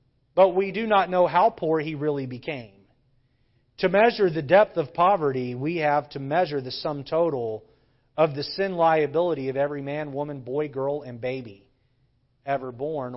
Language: English